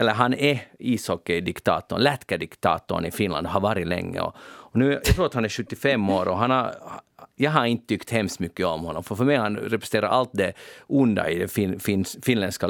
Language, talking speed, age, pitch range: Swedish, 200 wpm, 40-59, 100-130 Hz